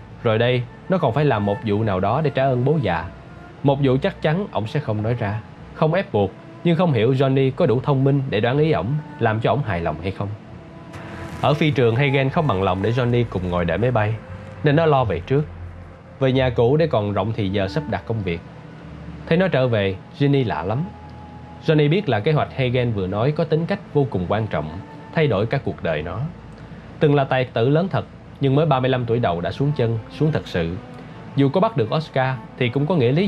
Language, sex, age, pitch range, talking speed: Vietnamese, male, 20-39, 110-155 Hz, 240 wpm